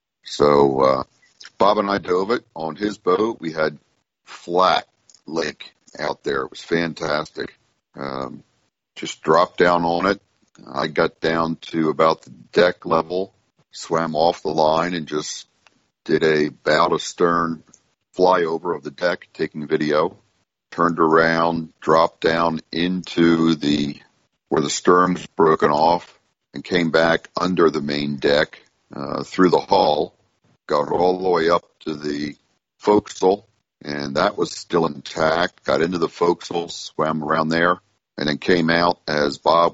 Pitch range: 75-95 Hz